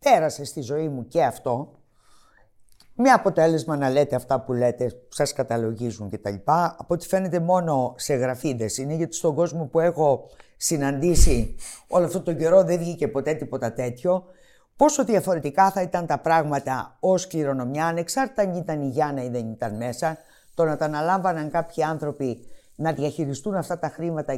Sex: female